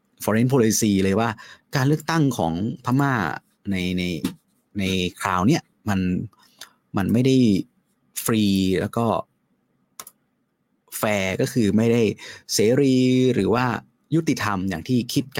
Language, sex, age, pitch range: Thai, male, 30-49, 100-135 Hz